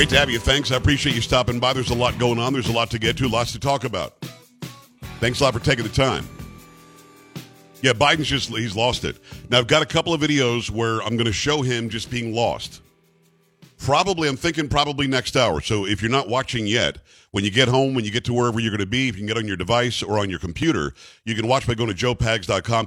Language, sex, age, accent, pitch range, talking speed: English, male, 50-69, American, 110-135 Hz, 255 wpm